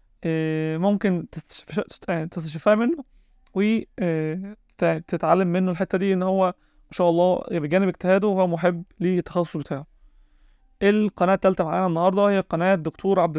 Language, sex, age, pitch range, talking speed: Arabic, male, 20-39, 160-190 Hz, 115 wpm